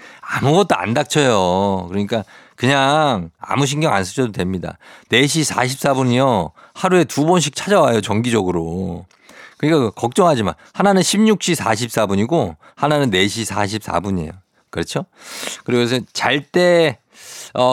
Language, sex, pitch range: Korean, male, 105-150 Hz